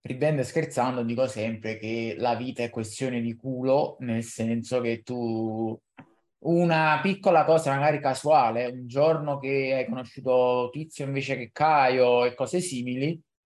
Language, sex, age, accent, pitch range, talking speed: Italian, male, 20-39, native, 125-145 Hz, 145 wpm